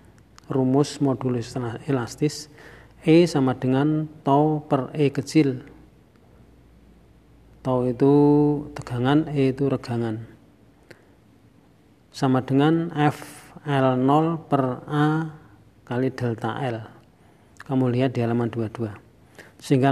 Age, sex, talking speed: 40-59, male, 100 wpm